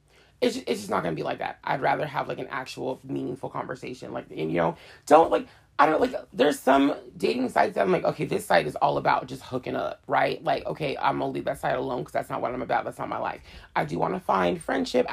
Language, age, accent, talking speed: English, 30-49, American, 270 wpm